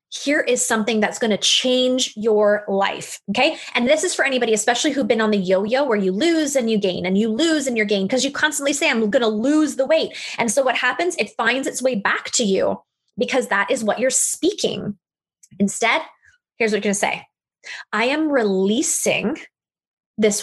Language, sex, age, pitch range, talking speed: English, female, 20-39, 195-255 Hz, 210 wpm